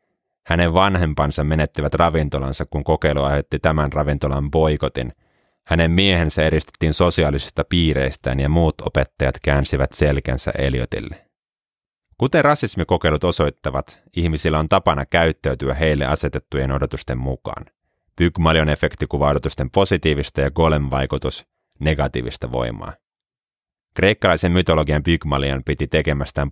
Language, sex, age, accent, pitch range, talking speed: Finnish, male, 30-49, native, 70-85 Hz, 100 wpm